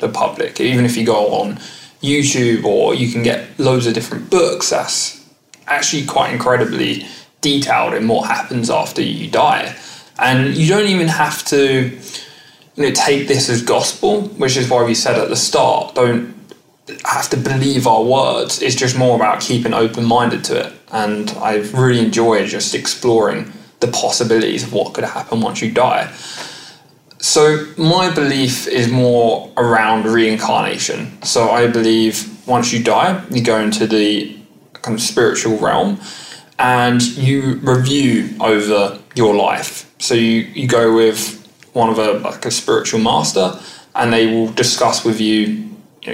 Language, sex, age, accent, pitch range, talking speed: English, male, 20-39, British, 115-140 Hz, 155 wpm